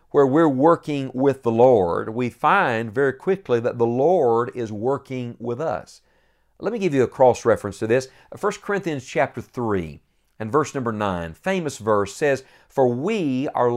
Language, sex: English, male